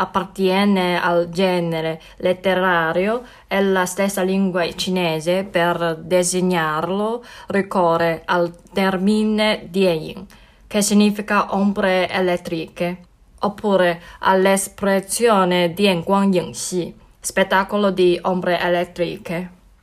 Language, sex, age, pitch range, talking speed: Italian, female, 20-39, 175-195 Hz, 85 wpm